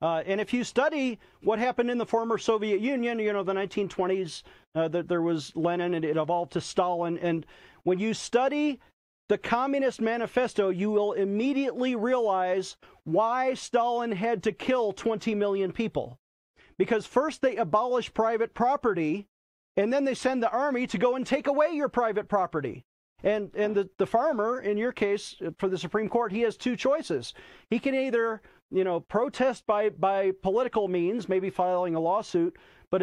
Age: 40-59